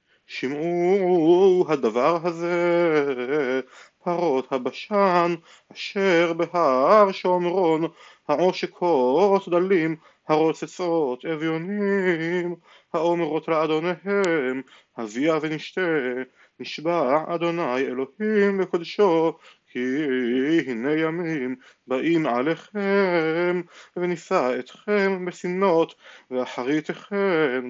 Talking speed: 65 wpm